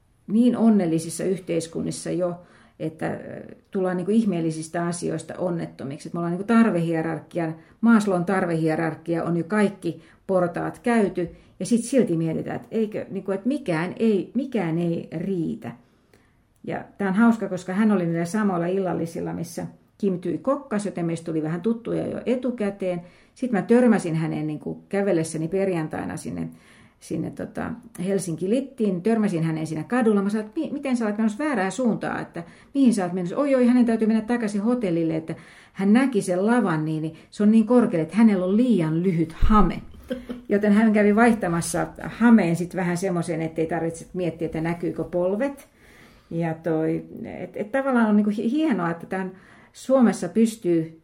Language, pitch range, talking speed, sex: Finnish, 170-225 Hz, 160 wpm, female